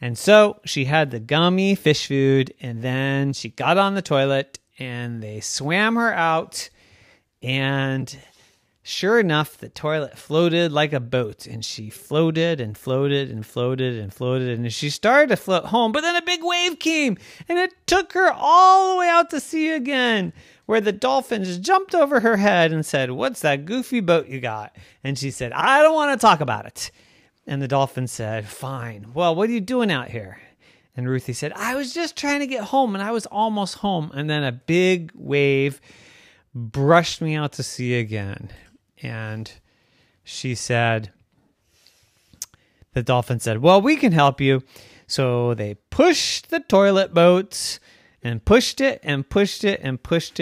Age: 40-59